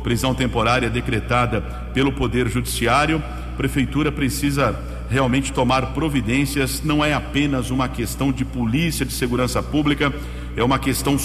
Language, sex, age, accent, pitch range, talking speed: Portuguese, male, 50-69, Brazilian, 120-140 Hz, 130 wpm